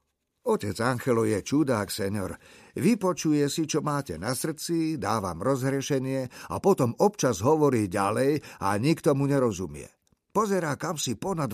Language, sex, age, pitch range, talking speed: Slovak, male, 50-69, 100-150 Hz, 135 wpm